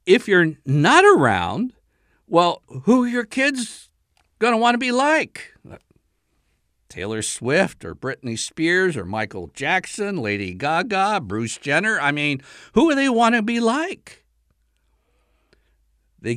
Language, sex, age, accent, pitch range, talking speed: English, male, 60-79, American, 130-185 Hz, 135 wpm